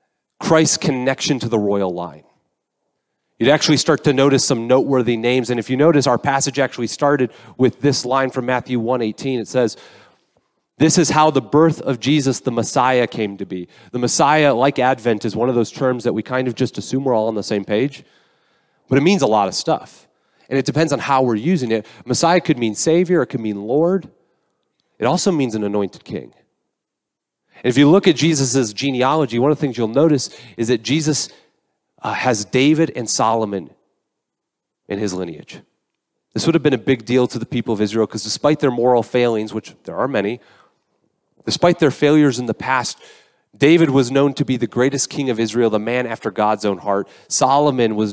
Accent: American